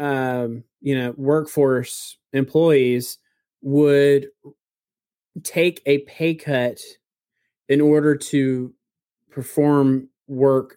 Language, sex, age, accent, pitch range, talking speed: English, male, 30-49, American, 125-145 Hz, 85 wpm